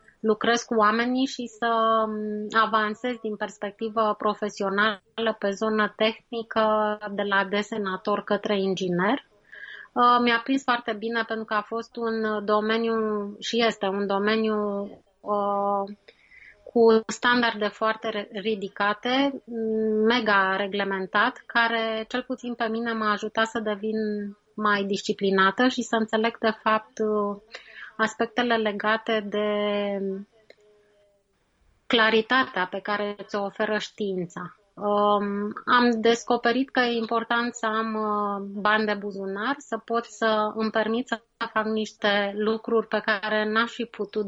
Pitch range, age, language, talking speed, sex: 205-230 Hz, 20-39, Romanian, 115 wpm, female